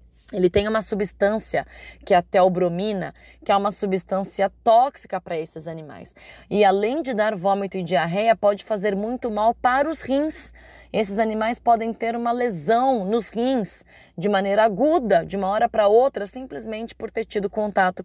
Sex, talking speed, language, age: female, 170 wpm, Portuguese, 20-39